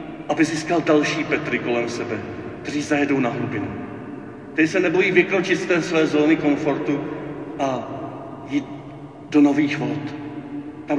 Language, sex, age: Czech, male, 40-59